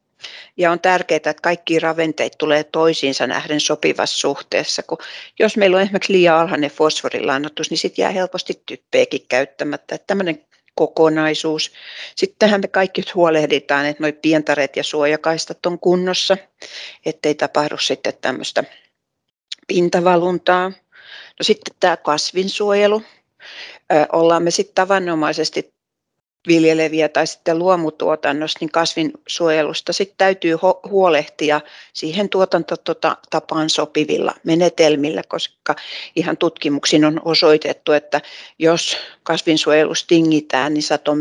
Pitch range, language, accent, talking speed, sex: 150-180 Hz, Finnish, native, 105 wpm, female